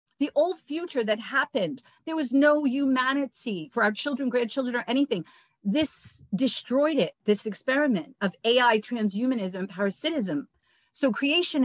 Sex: female